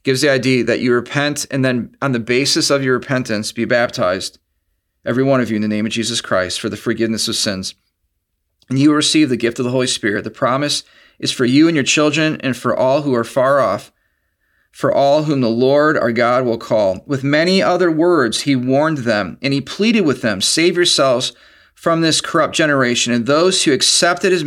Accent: American